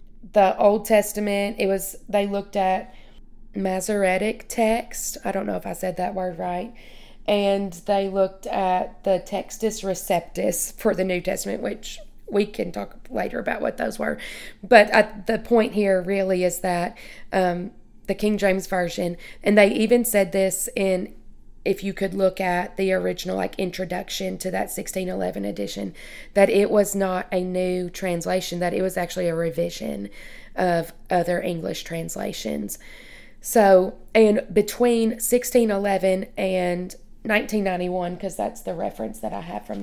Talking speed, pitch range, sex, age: 155 wpm, 180-205 Hz, female, 20-39